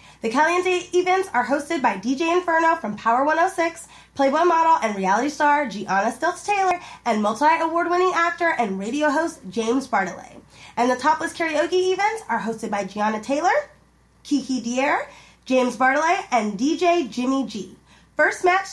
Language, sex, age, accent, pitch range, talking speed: English, female, 20-39, American, 260-360 Hz, 150 wpm